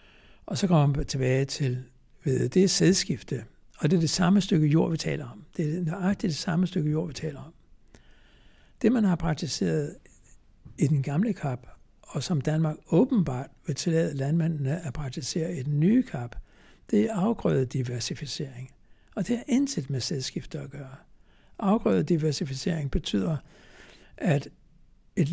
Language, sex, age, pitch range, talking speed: Danish, male, 60-79, 140-180 Hz, 160 wpm